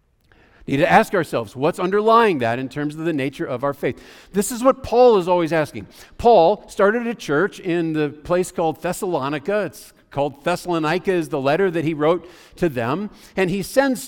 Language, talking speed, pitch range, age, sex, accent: English, 190 wpm, 165-215 Hz, 50-69, male, American